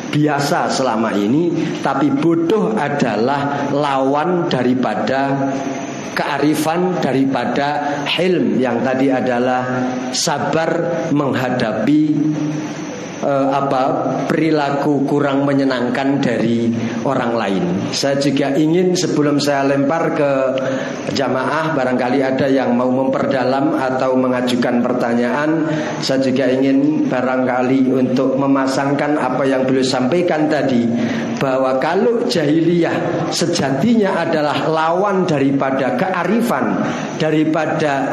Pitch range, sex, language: 130-170 Hz, male, Indonesian